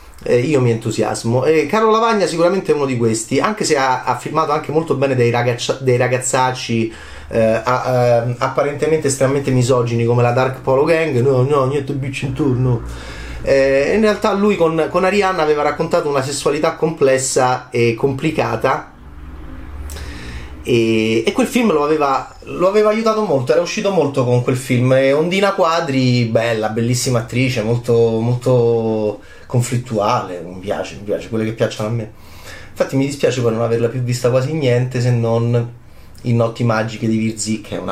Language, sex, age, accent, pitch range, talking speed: Italian, male, 30-49, native, 115-170 Hz, 170 wpm